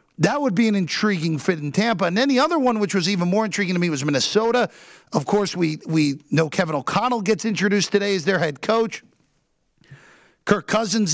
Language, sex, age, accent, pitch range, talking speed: English, male, 50-69, American, 160-230 Hz, 205 wpm